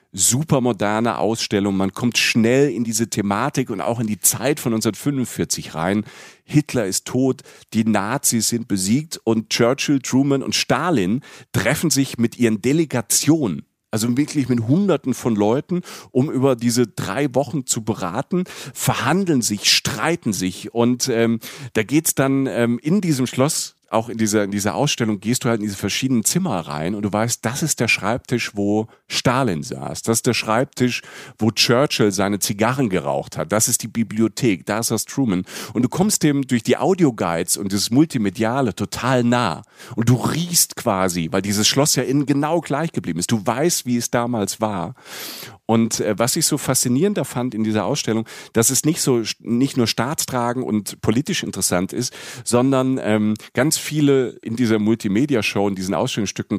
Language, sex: German, male